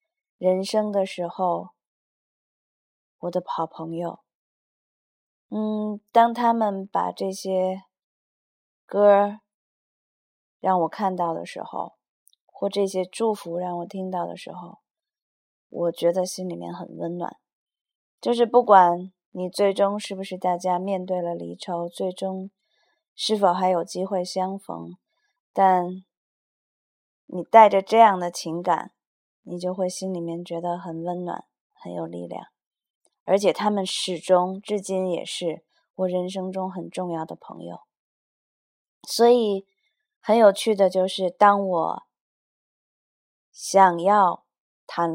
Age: 20-39